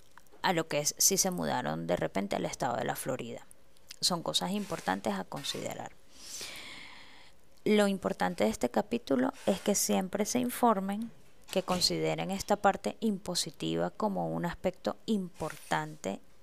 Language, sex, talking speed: Spanish, female, 140 wpm